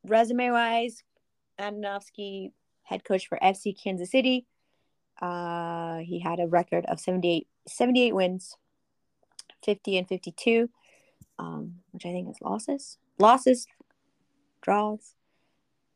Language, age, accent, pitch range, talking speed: English, 20-39, American, 170-210 Hz, 105 wpm